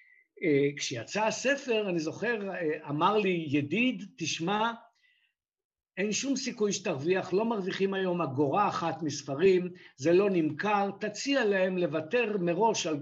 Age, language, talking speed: 60-79, Hebrew, 130 wpm